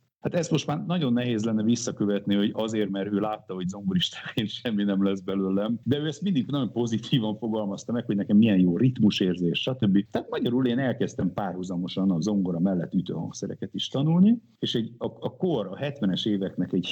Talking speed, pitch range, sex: 190 wpm, 95-120 Hz, male